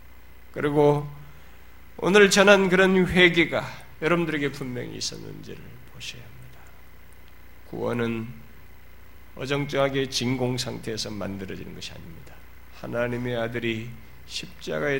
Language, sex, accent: Korean, male, native